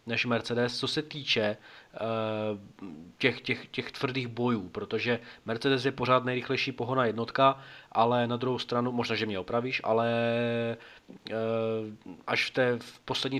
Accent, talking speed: native, 145 wpm